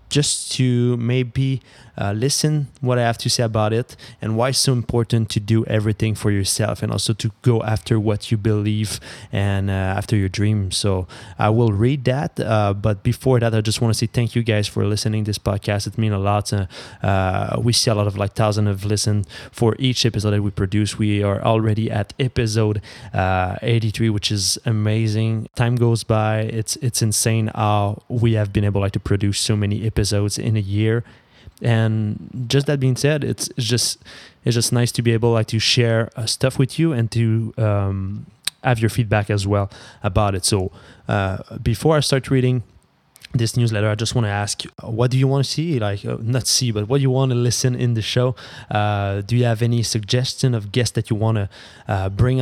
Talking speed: 215 wpm